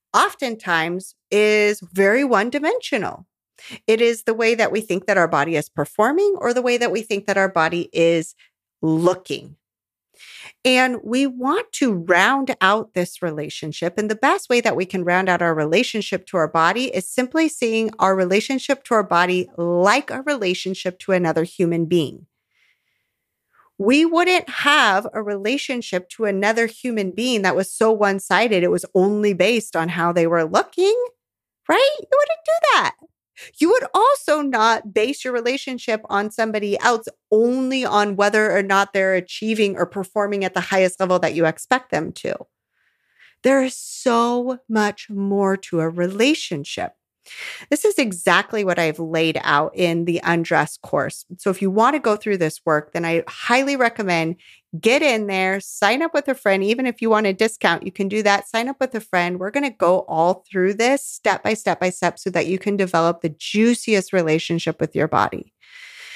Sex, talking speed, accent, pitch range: female, 180 wpm, American, 180-240 Hz